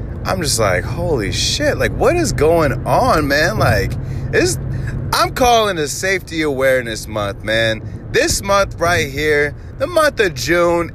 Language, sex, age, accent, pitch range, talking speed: English, male, 30-49, American, 110-150 Hz, 150 wpm